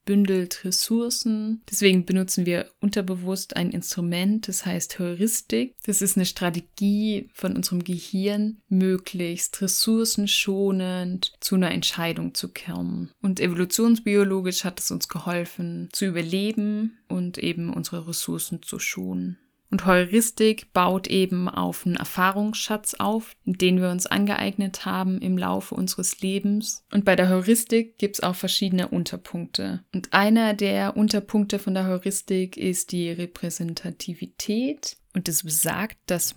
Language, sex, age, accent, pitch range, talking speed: German, female, 20-39, German, 175-205 Hz, 130 wpm